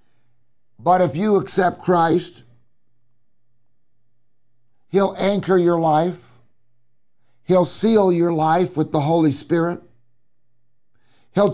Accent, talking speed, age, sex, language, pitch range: American, 95 wpm, 60-79, male, English, 120-165 Hz